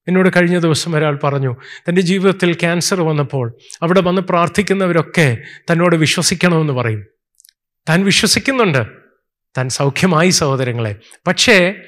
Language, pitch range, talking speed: Malayalam, 135-185 Hz, 105 wpm